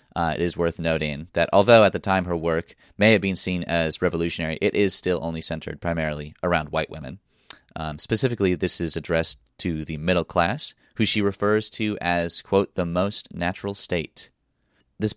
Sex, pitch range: male, 80-95 Hz